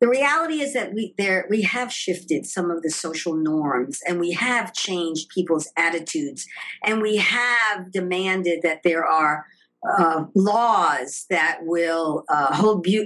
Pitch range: 165-200 Hz